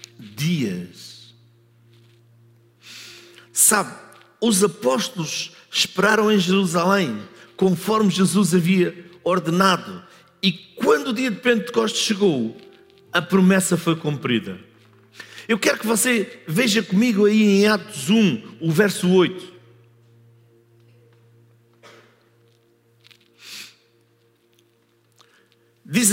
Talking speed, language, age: 80 wpm, Portuguese, 50-69